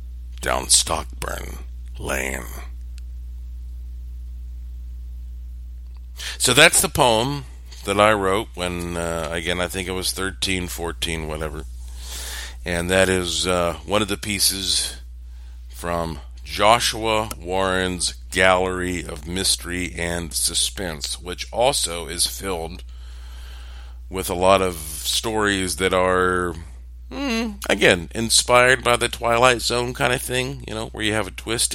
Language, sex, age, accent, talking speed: English, male, 50-69, American, 120 wpm